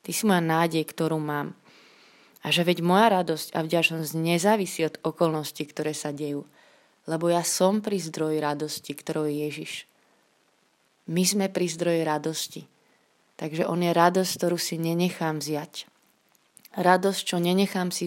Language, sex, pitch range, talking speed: Slovak, female, 160-185 Hz, 150 wpm